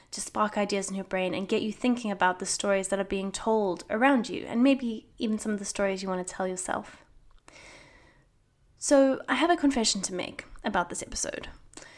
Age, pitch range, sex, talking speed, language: 10-29, 195-250 Hz, female, 205 wpm, English